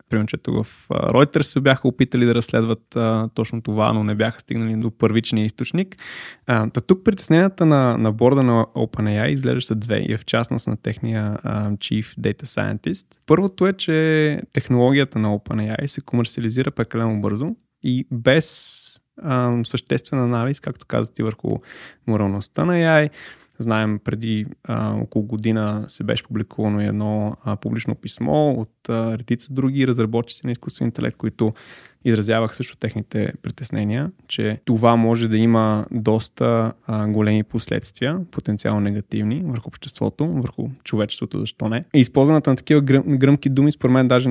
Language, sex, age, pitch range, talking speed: Bulgarian, male, 20-39, 110-140 Hz, 155 wpm